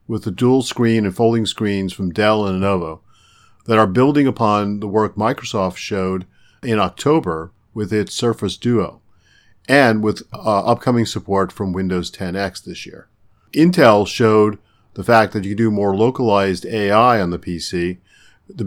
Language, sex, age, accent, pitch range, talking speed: English, male, 50-69, American, 95-115 Hz, 160 wpm